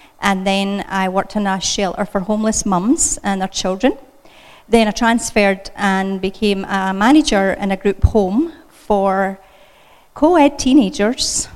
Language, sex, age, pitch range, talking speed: English, female, 30-49, 195-235 Hz, 140 wpm